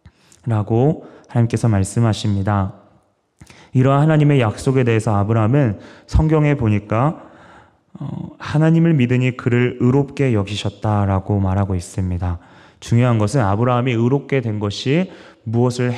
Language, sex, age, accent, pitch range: Korean, male, 20-39, native, 105-140 Hz